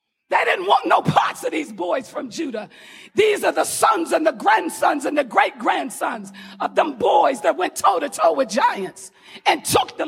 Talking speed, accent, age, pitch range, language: 185 wpm, American, 40-59, 295-400 Hz, English